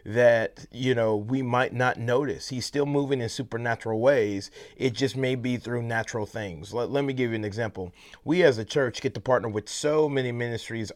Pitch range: 115-140 Hz